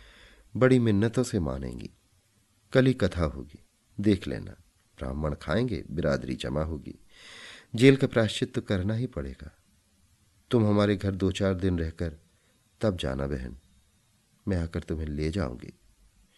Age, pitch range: 40-59, 85-115 Hz